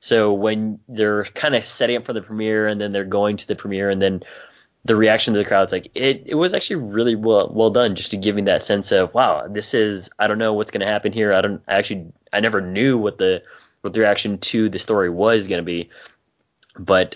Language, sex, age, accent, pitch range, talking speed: English, male, 20-39, American, 95-110 Hz, 250 wpm